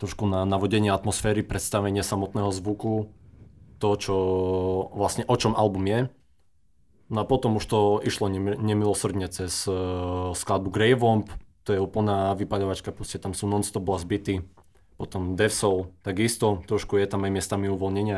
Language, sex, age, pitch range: Slovak, male, 20-39, 95-110 Hz